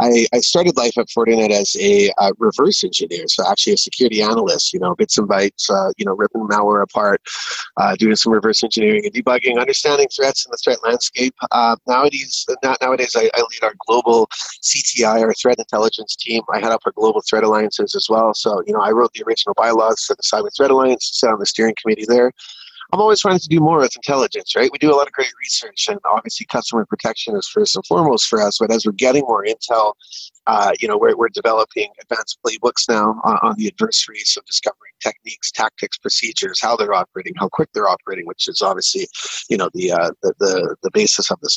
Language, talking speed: English, 220 wpm